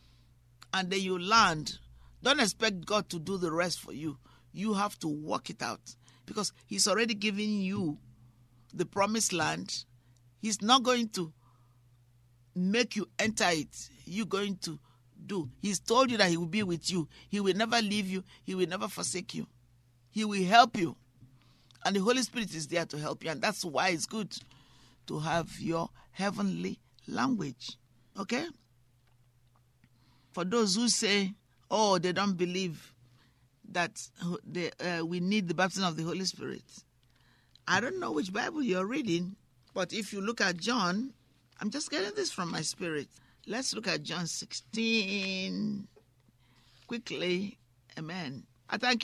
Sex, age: male, 50-69